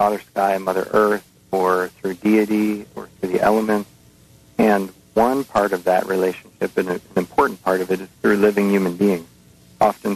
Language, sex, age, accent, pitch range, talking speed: English, male, 40-59, American, 90-105 Hz, 170 wpm